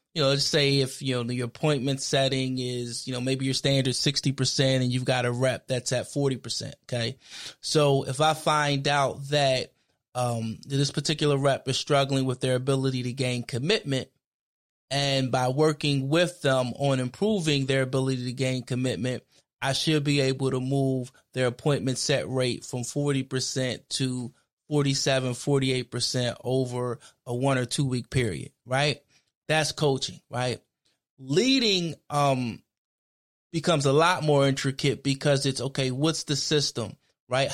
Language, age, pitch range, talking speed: English, 20-39, 125-145 Hz, 155 wpm